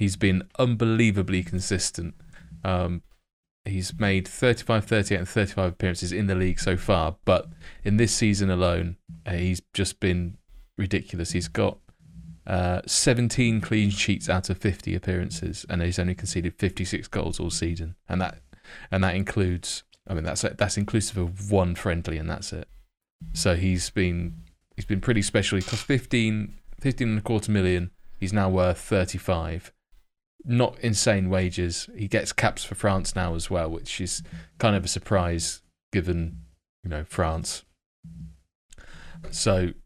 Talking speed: 150 wpm